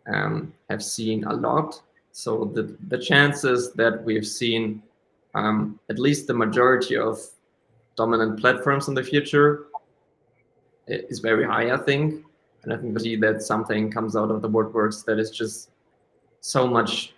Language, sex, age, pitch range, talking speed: English, male, 20-39, 115-135 Hz, 155 wpm